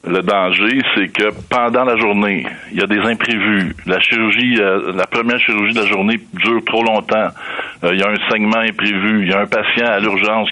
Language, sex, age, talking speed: French, male, 60-79, 210 wpm